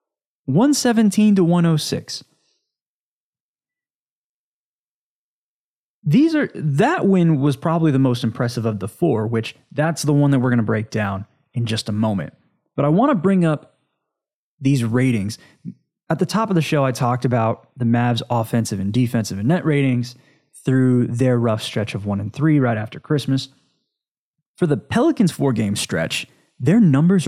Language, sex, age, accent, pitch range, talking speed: English, male, 20-39, American, 115-170 Hz, 160 wpm